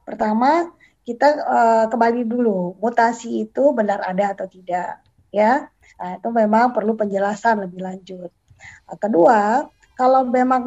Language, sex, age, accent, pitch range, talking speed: Indonesian, female, 20-39, native, 200-255 Hz, 125 wpm